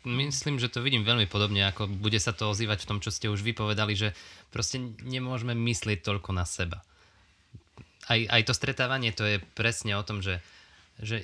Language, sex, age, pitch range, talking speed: Slovak, male, 20-39, 95-115 Hz, 185 wpm